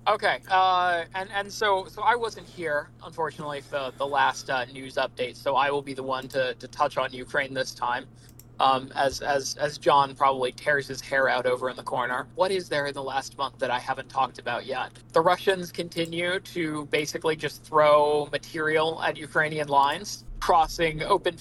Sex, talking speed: male, 195 wpm